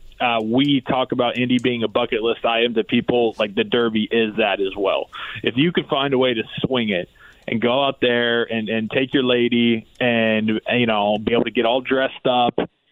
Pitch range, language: 115-135 Hz, English